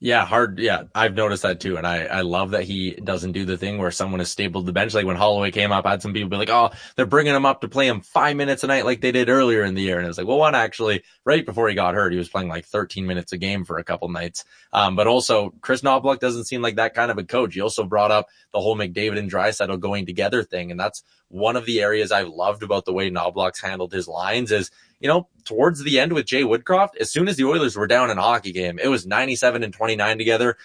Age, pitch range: 20-39, 95-125 Hz